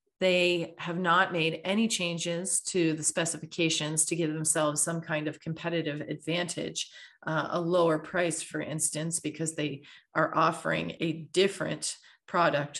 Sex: female